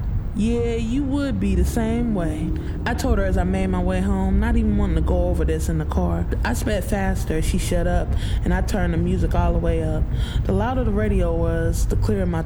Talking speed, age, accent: 235 wpm, 20-39, American